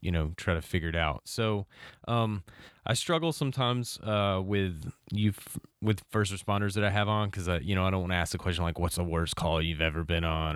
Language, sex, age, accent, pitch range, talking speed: English, male, 30-49, American, 85-110 Hz, 245 wpm